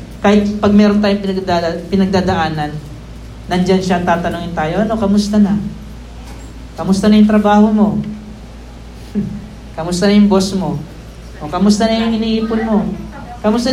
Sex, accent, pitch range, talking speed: male, native, 180-230 Hz, 130 wpm